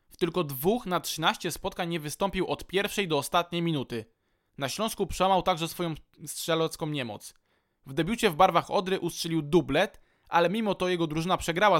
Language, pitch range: Polish, 150-190 Hz